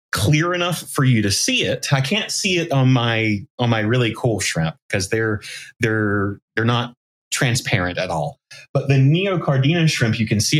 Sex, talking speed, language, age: male, 185 wpm, English, 30-49